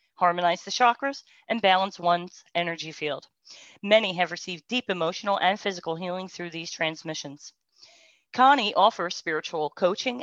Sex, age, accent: female, 40-59, American